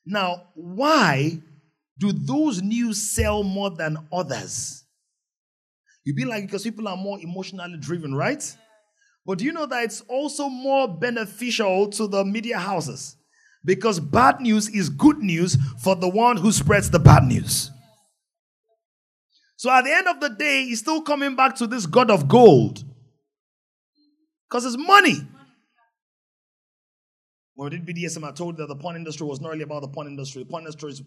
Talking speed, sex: 170 wpm, male